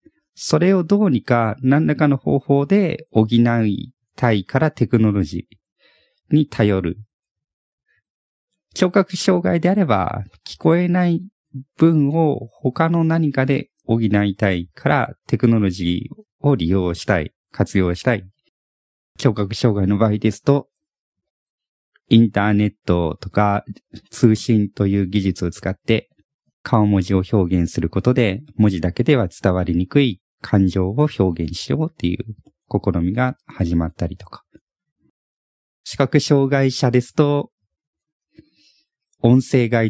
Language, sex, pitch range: Japanese, male, 95-140 Hz